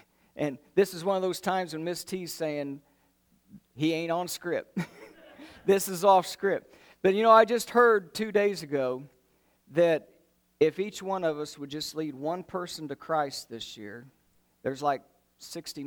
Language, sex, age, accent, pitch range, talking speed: English, male, 50-69, American, 135-190 Hz, 175 wpm